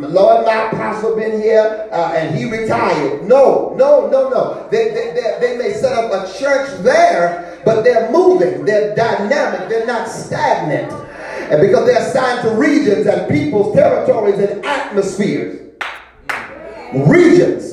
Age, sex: 40-59, male